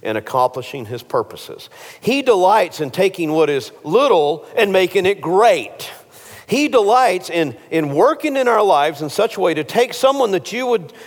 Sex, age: male, 50-69